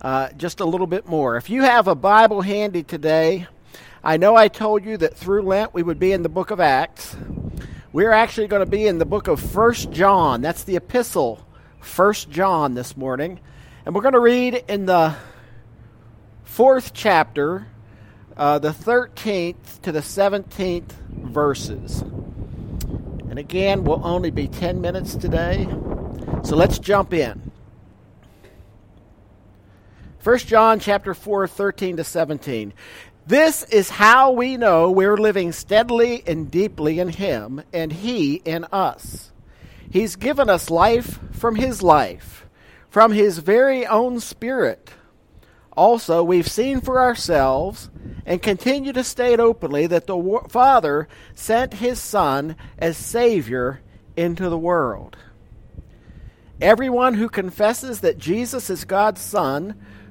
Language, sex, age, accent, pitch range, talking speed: English, male, 50-69, American, 145-220 Hz, 140 wpm